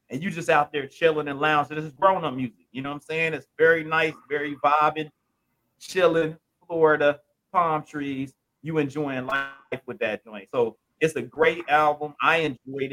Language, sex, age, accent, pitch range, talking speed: English, male, 30-49, American, 130-170 Hz, 185 wpm